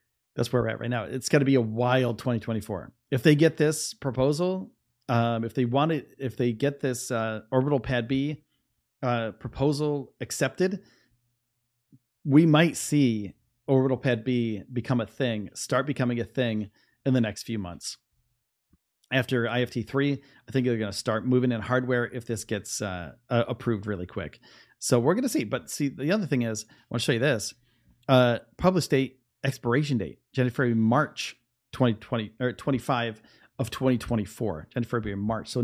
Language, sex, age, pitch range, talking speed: English, male, 40-59, 115-135 Hz, 175 wpm